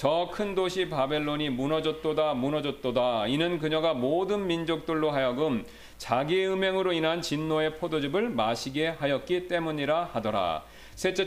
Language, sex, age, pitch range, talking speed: English, male, 40-59, 150-185 Hz, 105 wpm